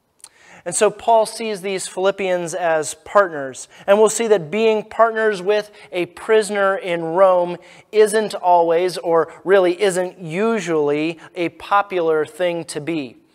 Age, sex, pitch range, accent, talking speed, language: 30-49, male, 165-205 Hz, American, 135 wpm, English